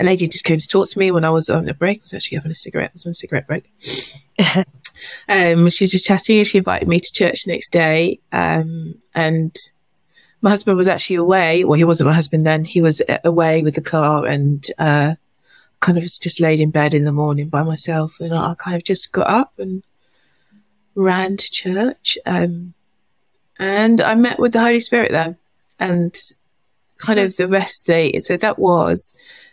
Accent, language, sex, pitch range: British, English, female, 165-200 Hz